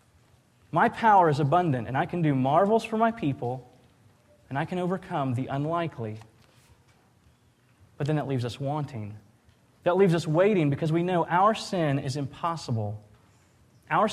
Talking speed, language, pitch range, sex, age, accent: 155 wpm, English, 120-155 Hz, male, 30-49, American